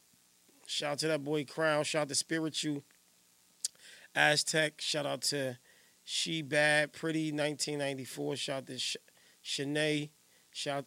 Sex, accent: male, American